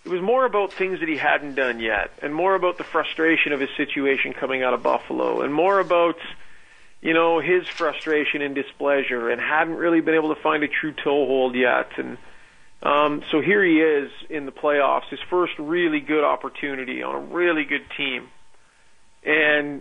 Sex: male